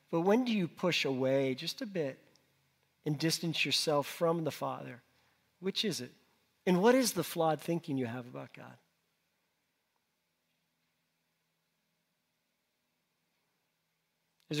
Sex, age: male, 40-59